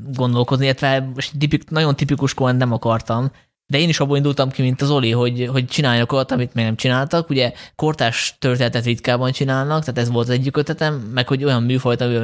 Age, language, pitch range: 20-39, Hungarian, 115-140 Hz